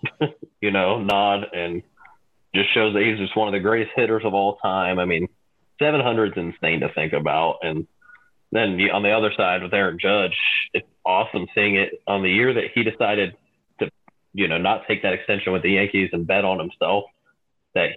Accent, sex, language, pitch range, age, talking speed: American, male, English, 95-120 Hz, 30-49, 195 wpm